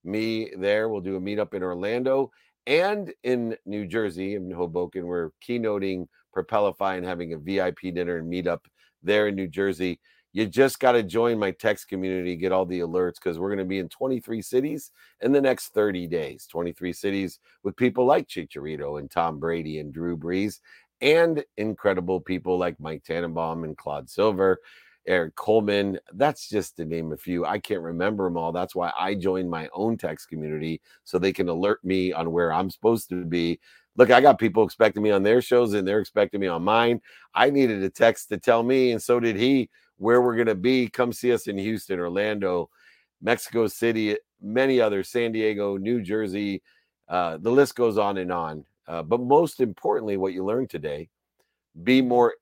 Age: 50-69